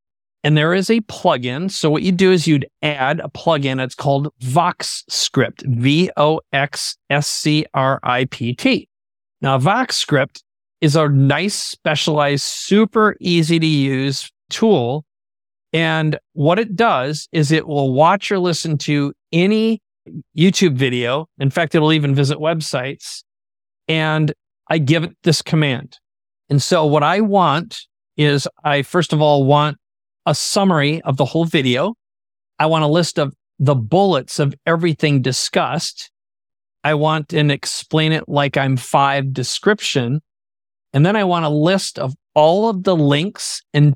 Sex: male